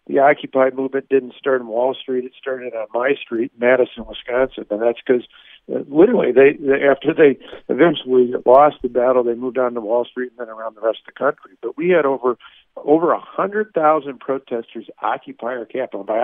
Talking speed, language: 205 wpm, English